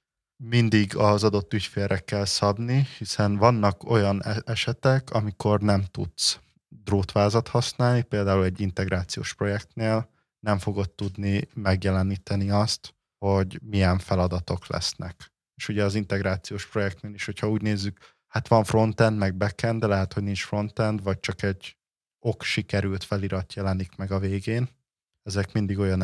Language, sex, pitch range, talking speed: Hungarian, male, 95-110 Hz, 140 wpm